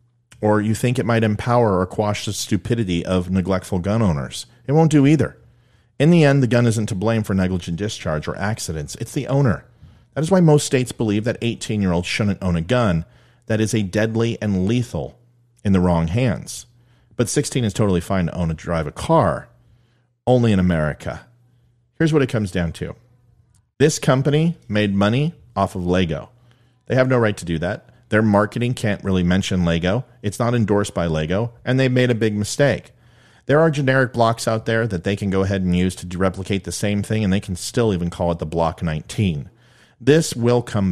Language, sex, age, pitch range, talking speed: English, male, 40-59, 95-120 Hz, 200 wpm